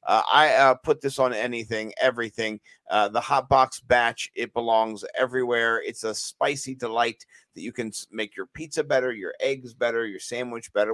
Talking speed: 180 wpm